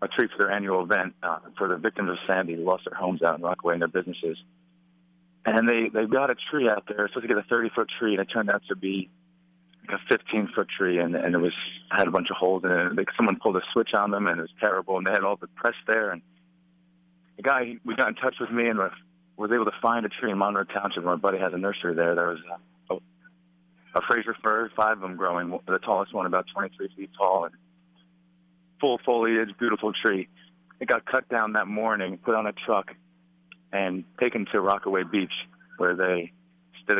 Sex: male